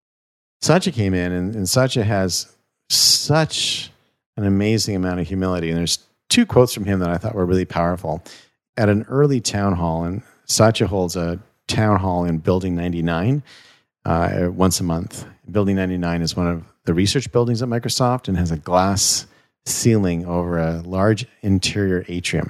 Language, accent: English, American